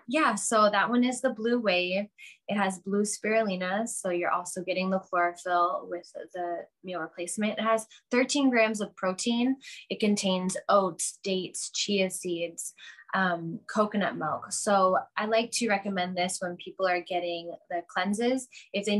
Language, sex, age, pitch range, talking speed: English, female, 10-29, 180-215 Hz, 160 wpm